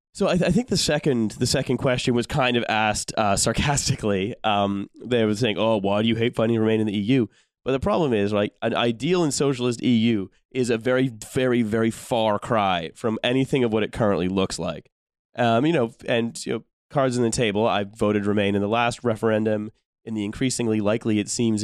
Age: 30-49